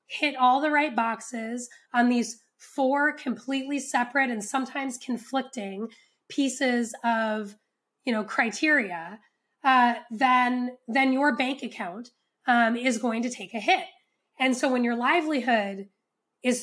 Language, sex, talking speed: English, female, 135 wpm